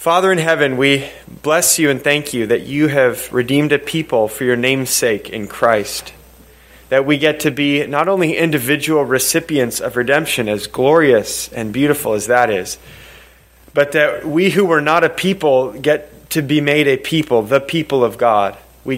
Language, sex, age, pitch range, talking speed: English, male, 30-49, 130-160 Hz, 180 wpm